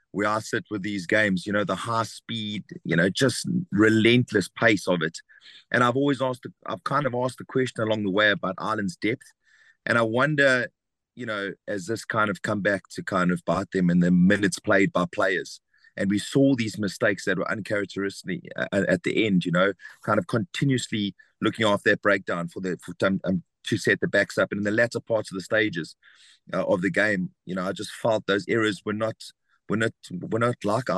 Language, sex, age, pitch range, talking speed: English, male, 30-49, 95-120 Hz, 215 wpm